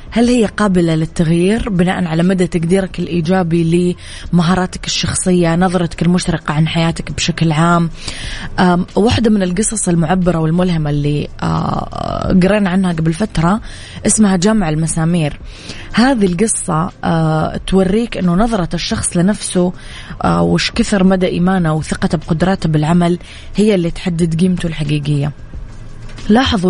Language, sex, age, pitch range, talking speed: English, female, 20-39, 160-195 Hz, 110 wpm